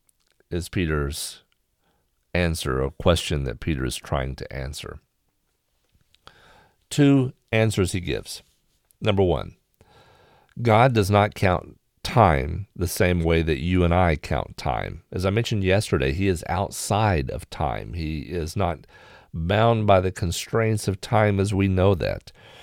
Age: 50-69